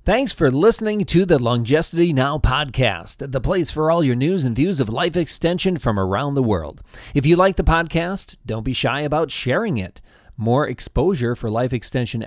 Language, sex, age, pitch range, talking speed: English, male, 40-59, 120-170 Hz, 190 wpm